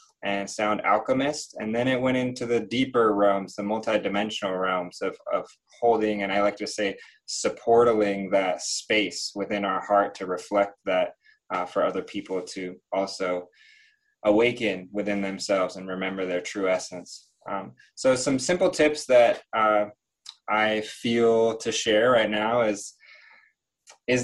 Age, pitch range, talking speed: 20-39, 105-145 Hz, 150 wpm